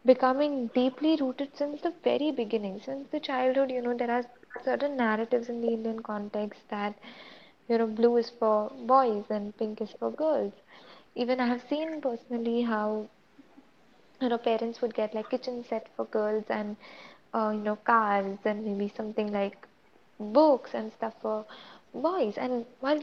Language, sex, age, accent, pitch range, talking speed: English, female, 20-39, Indian, 225-275 Hz, 165 wpm